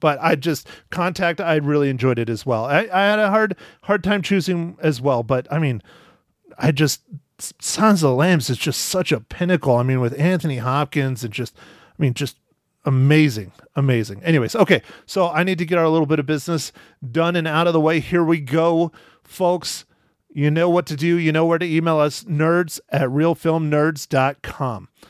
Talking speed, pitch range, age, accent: 205 wpm, 140-180 Hz, 30-49, American